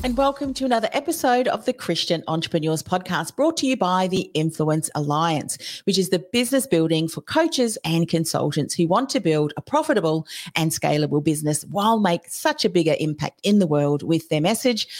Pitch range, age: 160-230 Hz, 40-59